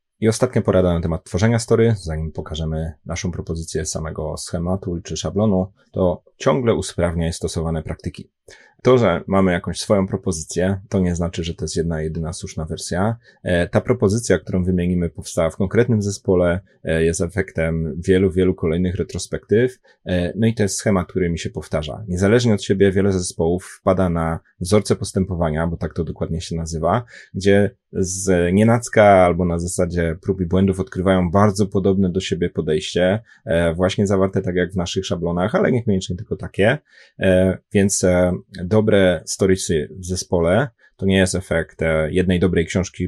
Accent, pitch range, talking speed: native, 85-100 Hz, 165 wpm